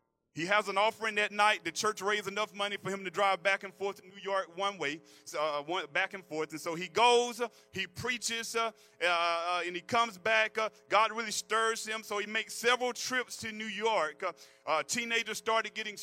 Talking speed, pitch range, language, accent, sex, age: 210 wpm, 155-220 Hz, English, American, male, 40-59